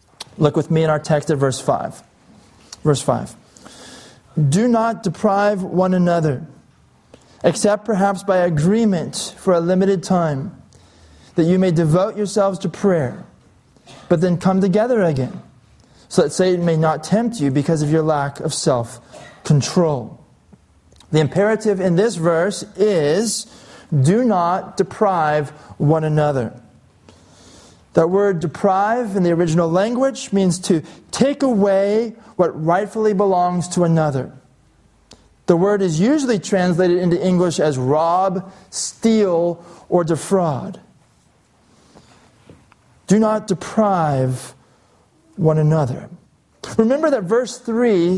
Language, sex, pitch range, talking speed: English, male, 155-200 Hz, 120 wpm